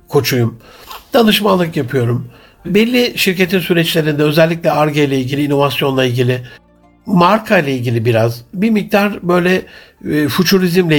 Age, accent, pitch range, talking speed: 60-79, native, 140-185 Hz, 115 wpm